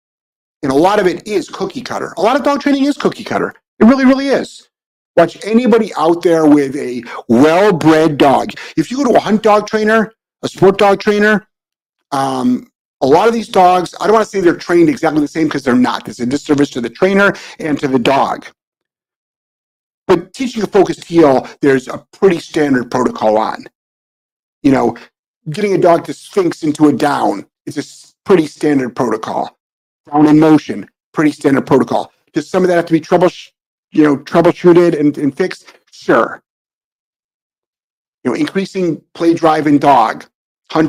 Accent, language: American, English